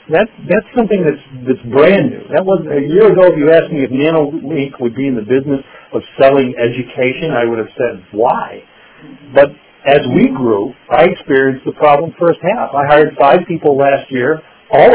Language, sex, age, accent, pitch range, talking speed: English, male, 50-69, American, 140-190 Hz, 195 wpm